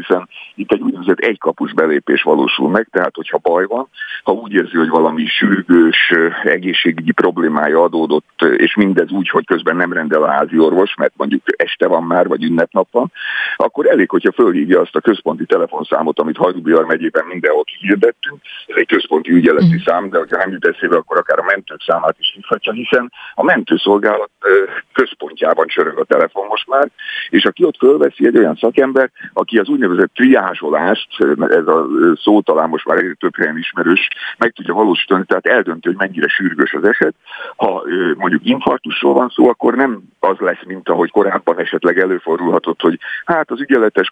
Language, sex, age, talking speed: Hungarian, male, 50-69, 170 wpm